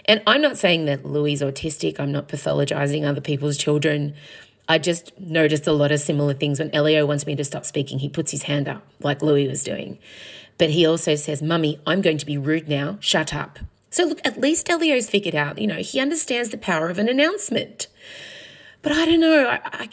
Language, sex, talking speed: English, female, 215 wpm